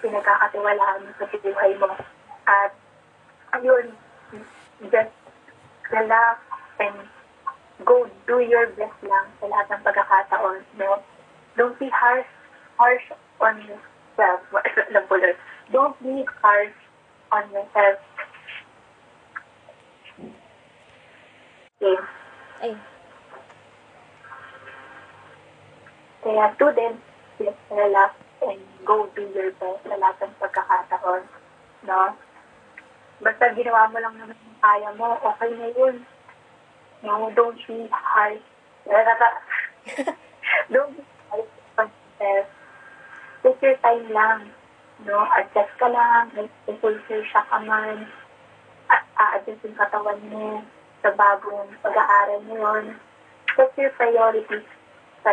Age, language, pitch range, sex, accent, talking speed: 20-39, Filipino, 200-235 Hz, female, native, 95 wpm